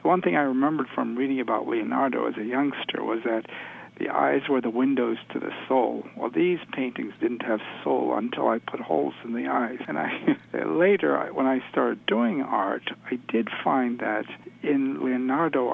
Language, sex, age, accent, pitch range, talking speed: English, male, 60-79, American, 120-160 Hz, 185 wpm